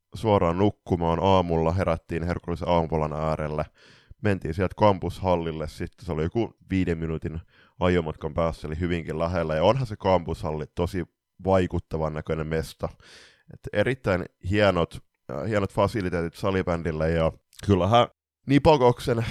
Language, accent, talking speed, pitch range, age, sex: Finnish, native, 120 wpm, 80-95 Hz, 20-39, male